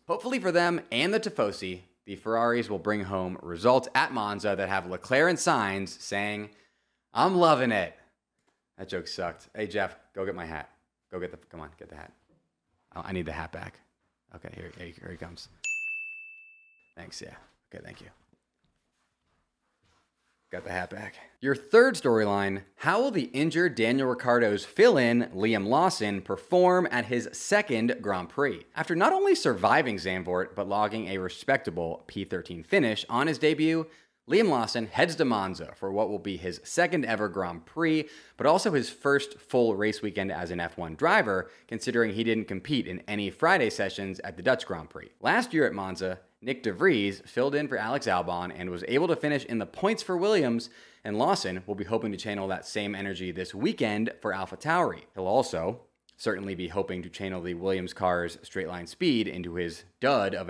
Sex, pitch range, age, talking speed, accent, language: male, 90-125 Hz, 30-49, 180 wpm, American, English